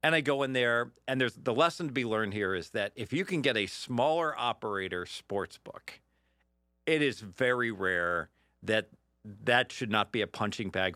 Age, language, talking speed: 50-69, English, 195 wpm